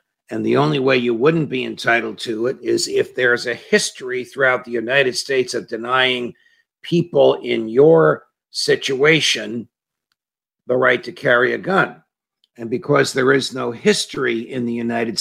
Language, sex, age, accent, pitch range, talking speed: English, male, 50-69, American, 120-160 Hz, 160 wpm